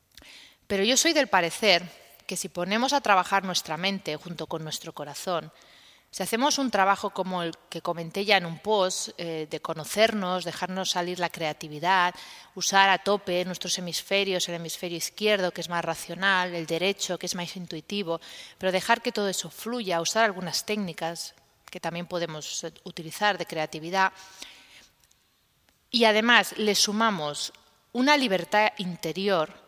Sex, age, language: female, 30-49, Spanish